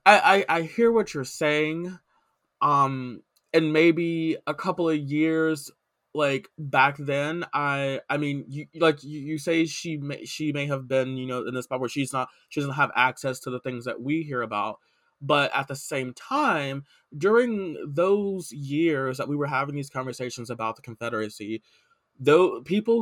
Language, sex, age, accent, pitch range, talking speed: English, male, 20-39, American, 130-165 Hz, 180 wpm